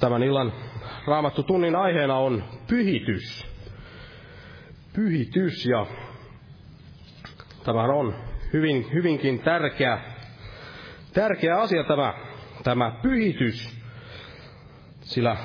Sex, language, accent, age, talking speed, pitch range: male, Finnish, native, 30-49, 75 wpm, 115-145 Hz